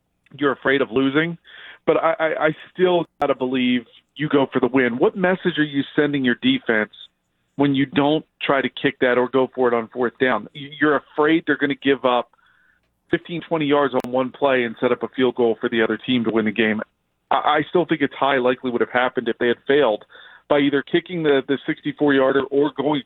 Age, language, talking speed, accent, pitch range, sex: 40-59, English, 225 wpm, American, 130-160 Hz, male